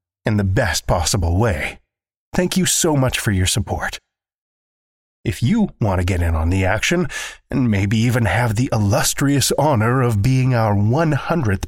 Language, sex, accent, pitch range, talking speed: English, male, American, 95-150 Hz, 165 wpm